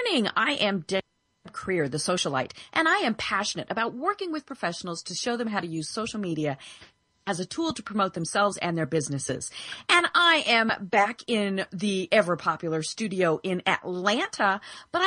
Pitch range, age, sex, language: 185-285 Hz, 40-59, female, English